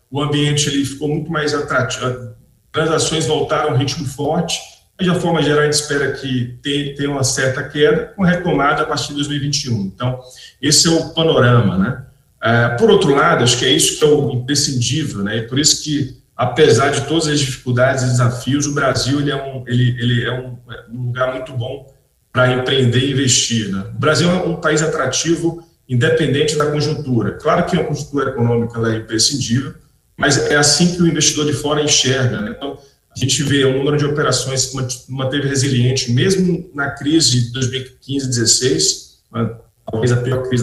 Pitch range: 125-150 Hz